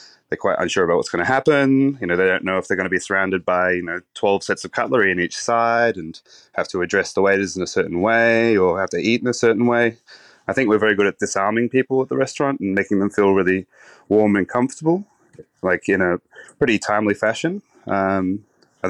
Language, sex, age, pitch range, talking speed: English, male, 20-39, 100-130 Hz, 235 wpm